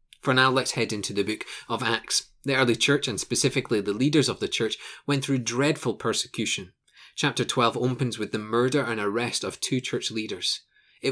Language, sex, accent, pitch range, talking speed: English, male, British, 115-140 Hz, 195 wpm